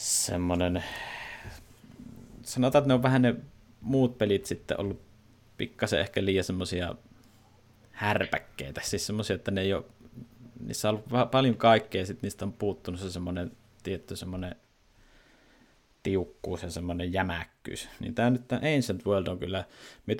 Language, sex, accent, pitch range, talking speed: English, male, Finnish, 90-115 Hz, 125 wpm